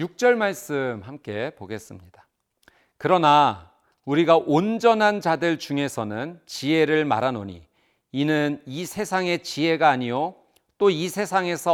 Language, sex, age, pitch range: Korean, male, 40-59, 125-205 Hz